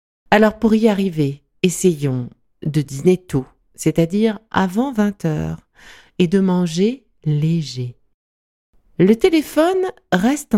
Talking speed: 100 wpm